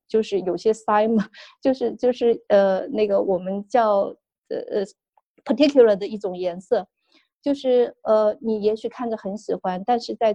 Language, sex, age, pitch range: Chinese, female, 20-39, 185-225 Hz